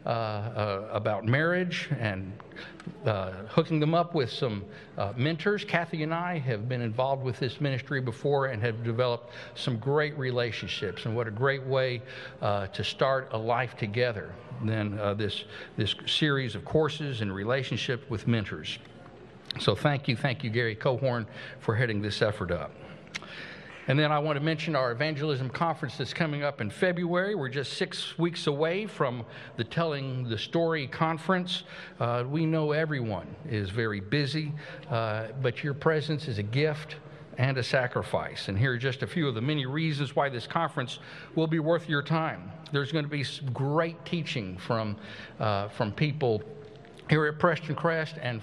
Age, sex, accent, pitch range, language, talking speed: 60-79, male, American, 115-155 Hz, English, 175 wpm